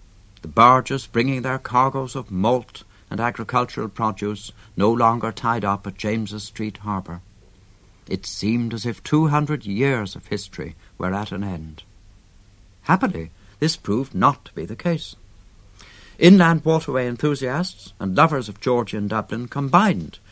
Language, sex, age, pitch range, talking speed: English, male, 60-79, 95-125 Hz, 135 wpm